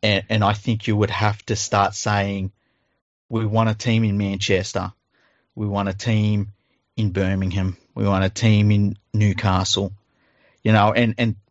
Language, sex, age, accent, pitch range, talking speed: English, male, 30-49, Australian, 105-115 Hz, 160 wpm